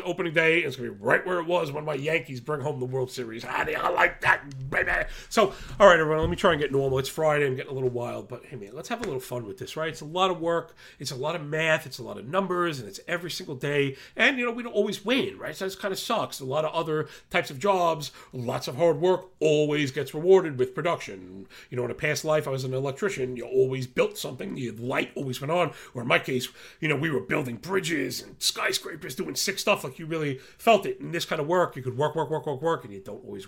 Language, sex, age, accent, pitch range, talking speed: English, male, 40-59, American, 135-180 Hz, 280 wpm